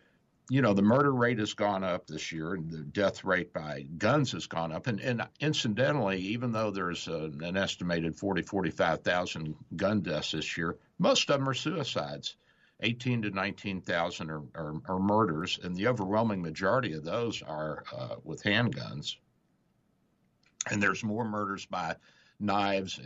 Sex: male